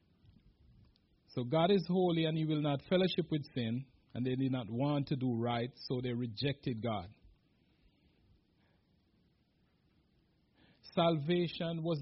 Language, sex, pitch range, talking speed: English, male, 125-165 Hz, 125 wpm